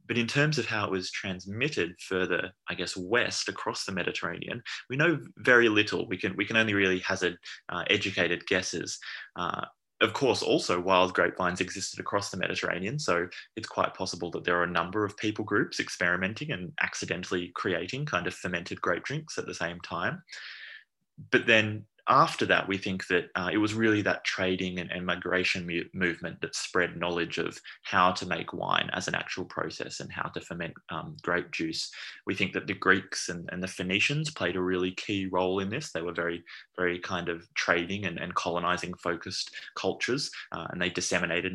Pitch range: 90-105 Hz